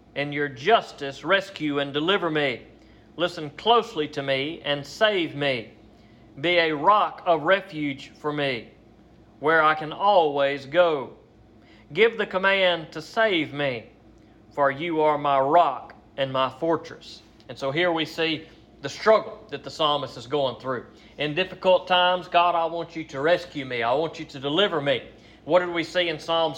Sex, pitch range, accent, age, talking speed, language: male, 140-175 Hz, American, 40-59, 170 wpm, English